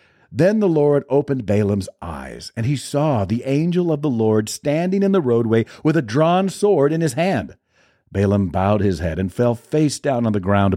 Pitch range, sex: 100-145 Hz, male